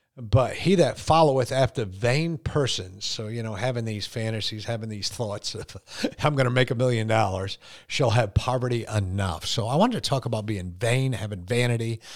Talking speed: 190 wpm